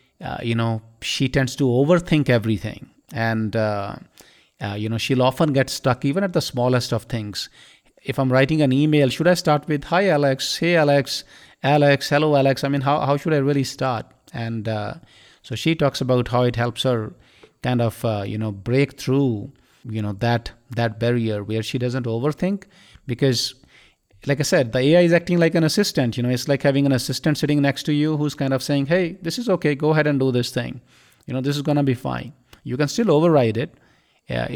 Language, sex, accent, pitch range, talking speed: English, male, Indian, 115-145 Hz, 215 wpm